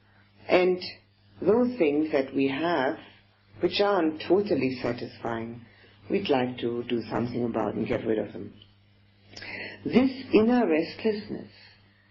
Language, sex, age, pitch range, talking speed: English, female, 60-79, 100-140 Hz, 120 wpm